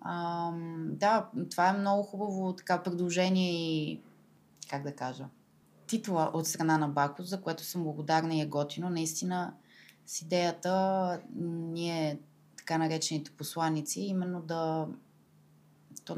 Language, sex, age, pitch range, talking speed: Bulgarian, female, 20-39, 160-205 Hz, 125 wpm